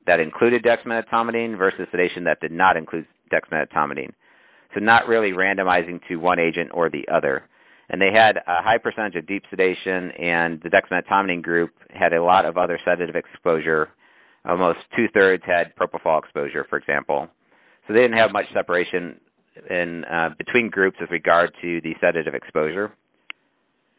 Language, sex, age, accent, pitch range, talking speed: English, male, 50-69, American, 85-110 Hz, 155 wpm